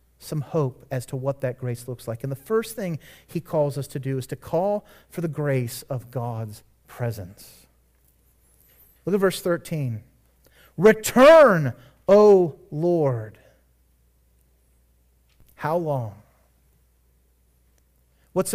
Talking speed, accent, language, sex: 120 wpm, American, English, male